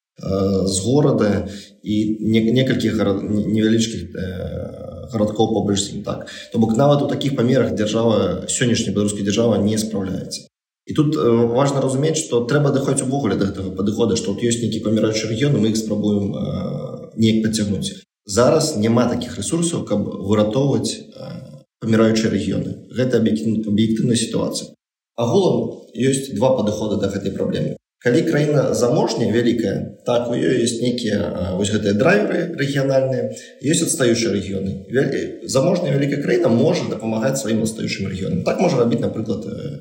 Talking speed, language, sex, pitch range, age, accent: 135 wpm, Russian, male, 105-125 Hz, 30-49, native